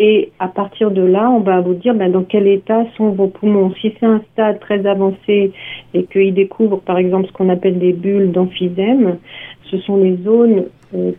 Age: 50-69